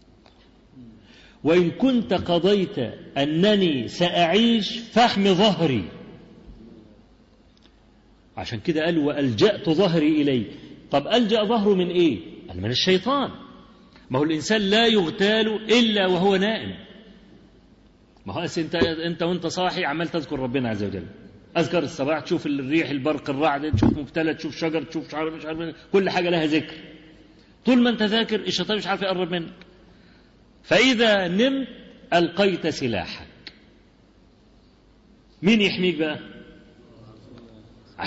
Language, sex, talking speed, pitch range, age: Arabic, male, 115 wpm, 155-210 Hz, 40-59